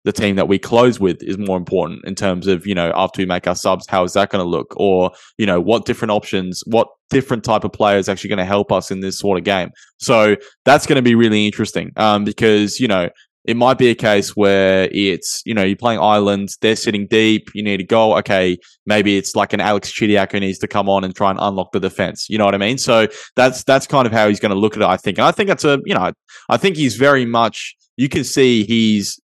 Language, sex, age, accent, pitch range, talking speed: English, male, 20-39, Australian, 100-115 Hz, 265 wpm